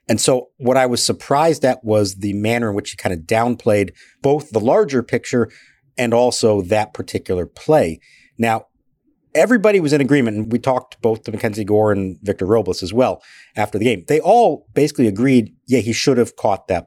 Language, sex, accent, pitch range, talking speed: English, male, American, 100-130 Hz, 195 wpm